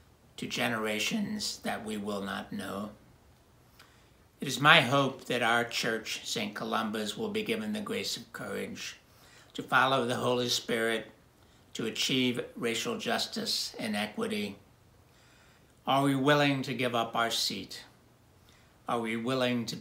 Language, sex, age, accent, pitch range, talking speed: English, male, 60-79, American, 110-140 Hz, 140 wpm